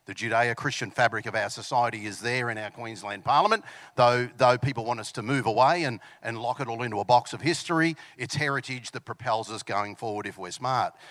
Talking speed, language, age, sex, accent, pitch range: 215 wpm, English, 50-69, male, Australian, 115-145 Hz